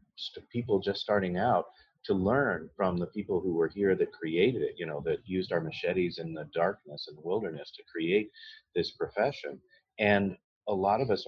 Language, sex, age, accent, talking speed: English, male, 40-59, American, 195 wpm